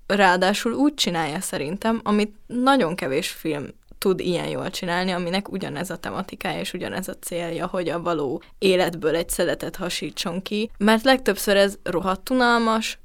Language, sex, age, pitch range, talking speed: Hungarian, female, 10-29, 170-220 Hz, 145 wpm